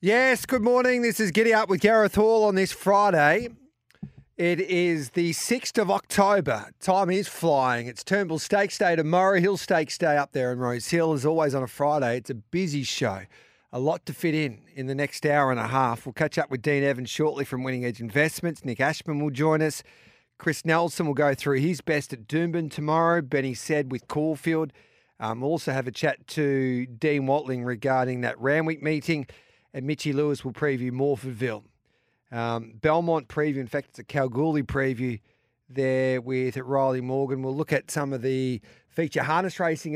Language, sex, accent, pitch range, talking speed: English, male, Australian, 130-160 Hz, 190 wpm